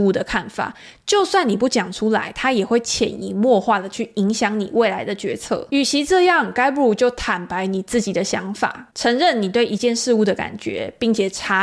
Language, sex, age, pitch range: Chinese, female, 20-39, 195-250 Hz